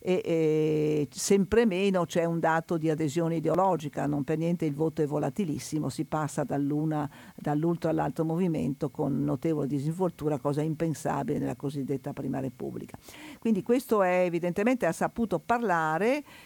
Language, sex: Italian, female